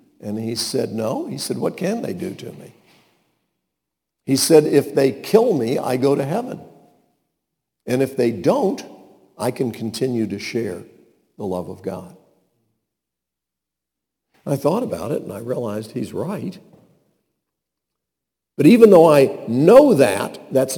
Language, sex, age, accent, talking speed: English, male, 60-79, American, 145 wpm